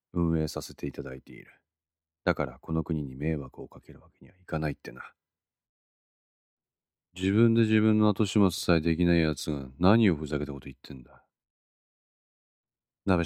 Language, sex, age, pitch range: Japanese, male, 40-59, 75-95 Hz